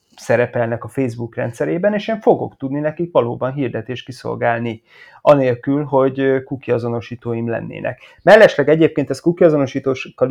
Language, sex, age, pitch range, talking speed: Hungarian, male, 30-49, 120-140 Hz, 115 wpm